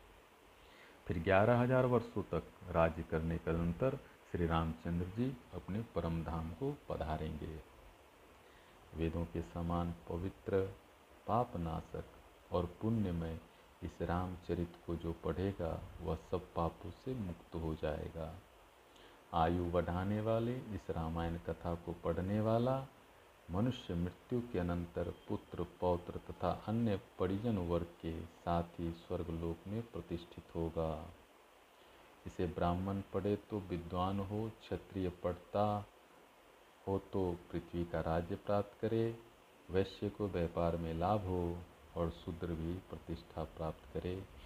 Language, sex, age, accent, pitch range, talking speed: Hindi, male, 50-69, native, 85-95 Hz, 125 wpm